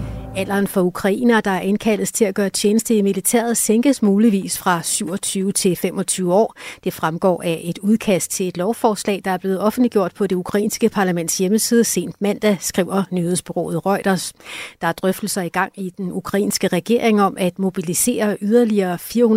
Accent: native